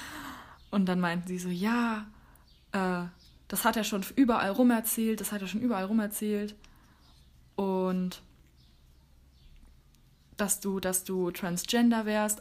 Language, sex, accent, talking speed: German, female, German, 135 wpm